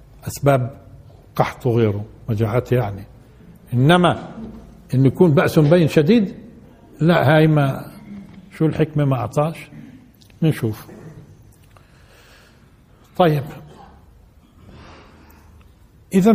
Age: 60-79